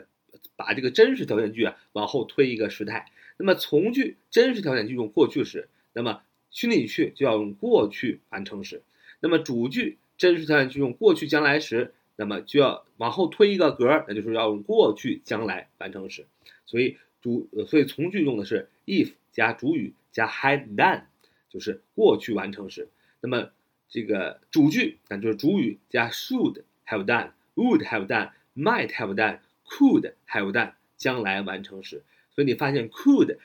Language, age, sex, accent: Chinese, 30-49, male, native